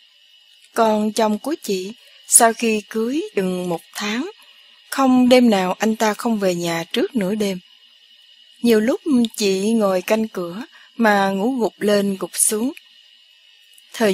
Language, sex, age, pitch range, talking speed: Vietnamese, female, 20-39, 190-245 Hz, 145 wpm